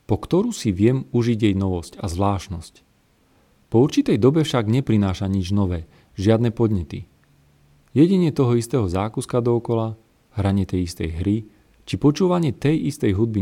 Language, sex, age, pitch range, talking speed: Slovak, male, 40-59, 95-130 Hz, 145 wpm